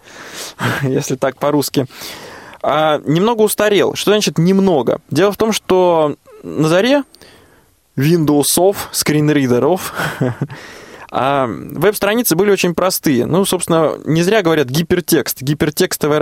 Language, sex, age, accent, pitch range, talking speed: Russian, male, 20-39, native, 145-185 Hz, 100 wpm